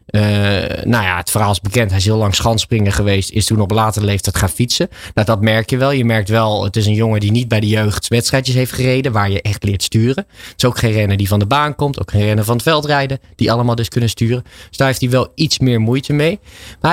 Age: 20-39